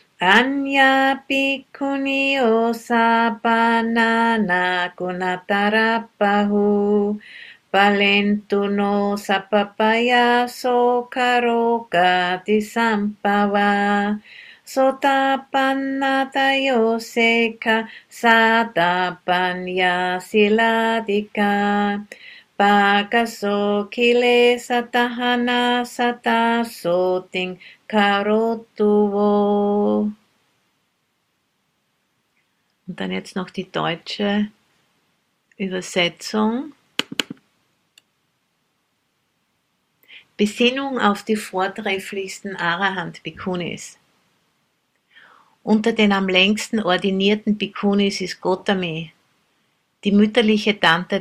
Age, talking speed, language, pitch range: 40-59, 45 wpm, English, 195-235 Hz